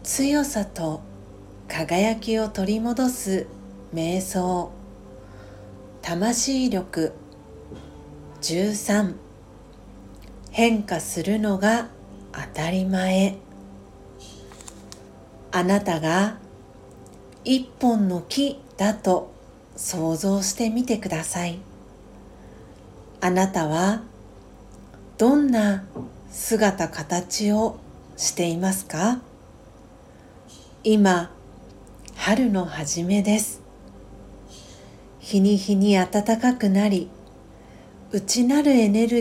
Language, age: Japanese, 40-59